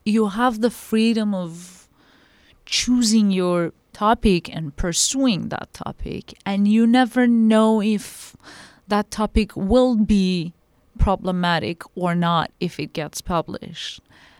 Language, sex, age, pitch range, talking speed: English, female, 30-49, 170-215 Hz, 115 wpm